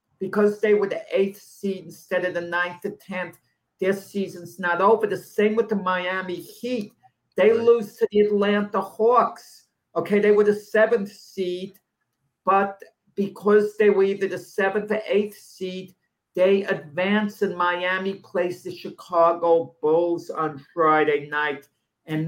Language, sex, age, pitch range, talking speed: English, male, 50-69, 160-195 Hz, 150 wpm